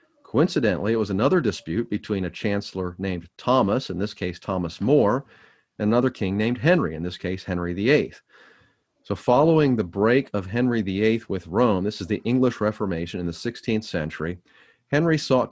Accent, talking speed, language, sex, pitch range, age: American, 175 wpm, English, male, 95-125 Hz, 40-59